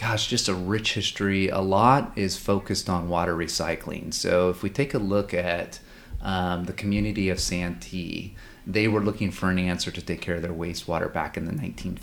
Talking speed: 200 wpm